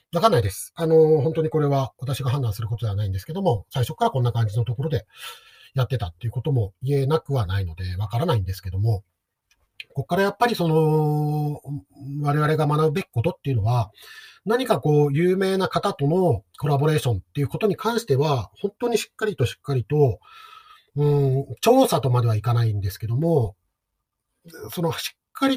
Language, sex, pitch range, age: Japanese, male, 115-165 Hz, 40-59